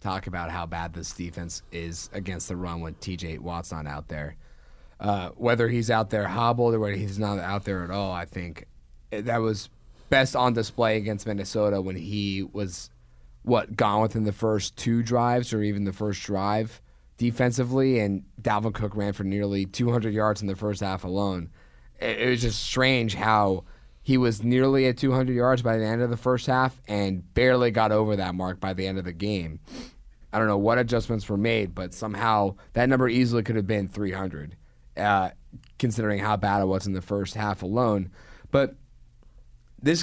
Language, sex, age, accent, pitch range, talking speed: English, male, 30-49, American, 95-115 Hz, 190 wpm